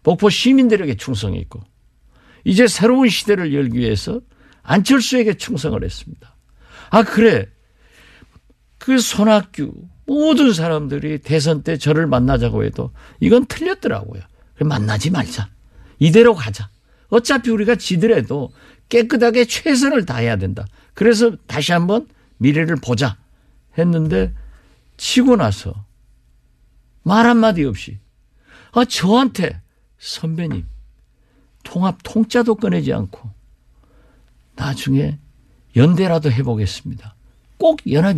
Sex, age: male, 50-69